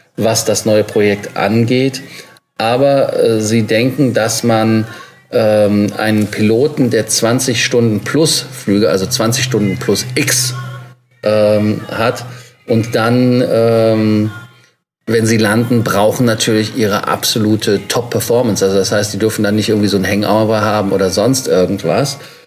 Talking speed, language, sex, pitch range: 140 wpm, German, male, 105-120 Hz